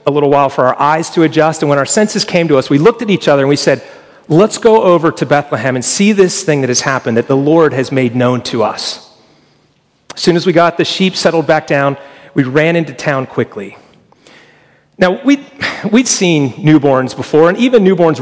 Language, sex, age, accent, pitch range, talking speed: English, male, 40-59, American, 135-175 Hz, 220 wpm